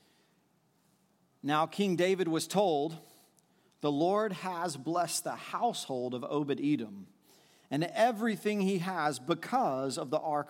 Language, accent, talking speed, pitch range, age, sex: English, American, 120 wpm, 160-205 Hz, 40-59, male